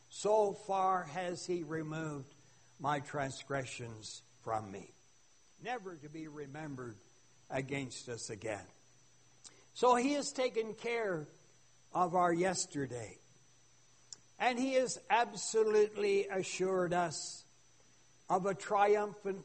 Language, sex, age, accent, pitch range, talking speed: English, male, 60-79, American, 140-230 Hz, 100 wpm